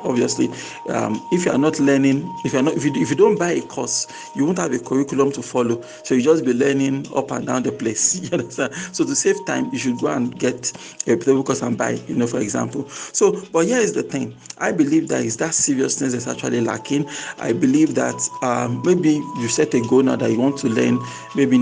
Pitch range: 130-160 Hz